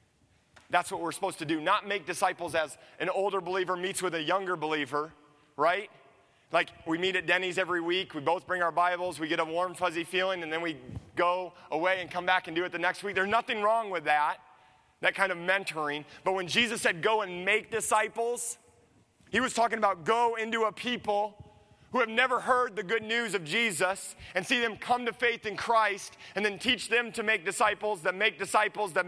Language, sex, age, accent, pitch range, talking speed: English, male, 30-49, American, 165-220 Hz, 215 wpm